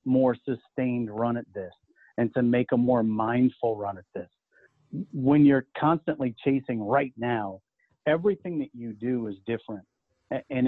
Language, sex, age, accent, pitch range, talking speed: English, male, 40-59, American, 120-145 Hz, 150 wpm